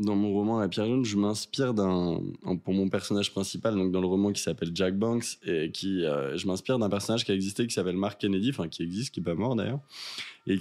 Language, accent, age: French, French, 20-39